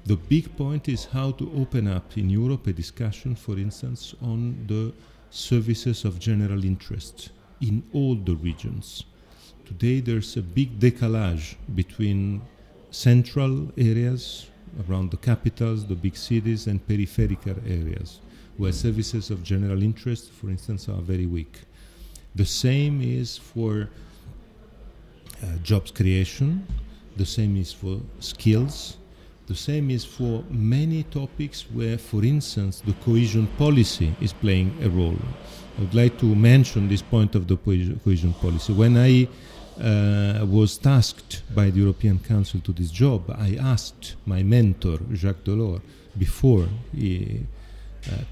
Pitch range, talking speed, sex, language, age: 95-120 Hz, 140 wpm, male, Czech, 40-59